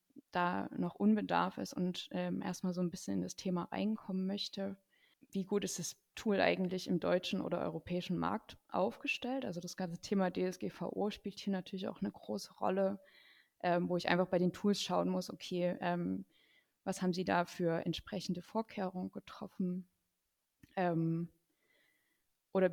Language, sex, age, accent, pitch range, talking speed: German, female, 20-39, German, 175-200 Hz, 160 wpm